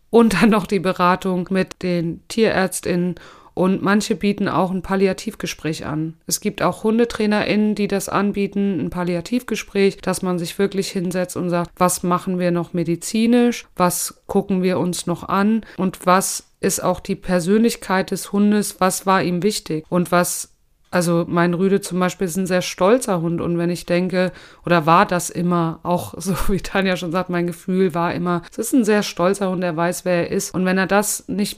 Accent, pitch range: German, 175-195 Hz